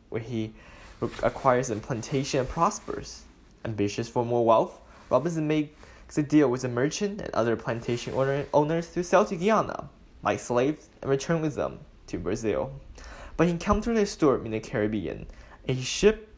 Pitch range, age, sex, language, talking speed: 120-160 Hz, 10-29, male, English, 170 wpm